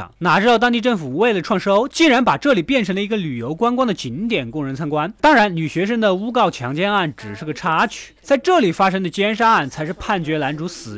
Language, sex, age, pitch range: Chinese, male, 20-39, 155-240 Hz